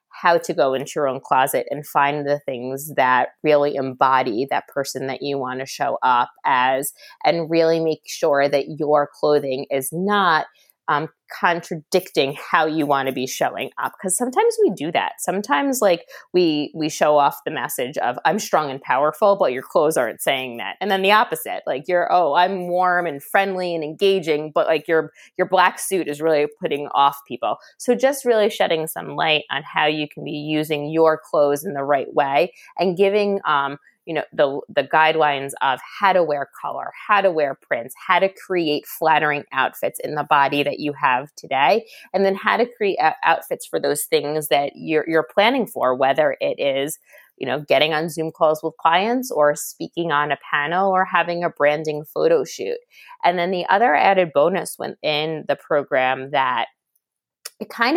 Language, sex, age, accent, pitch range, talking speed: English, female, 20-39, American, 140-185 Hz, 190 wpm